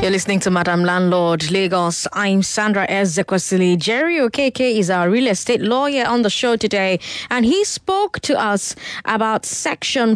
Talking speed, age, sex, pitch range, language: 165 wpm, 20-39, female, 170-220 Hz, English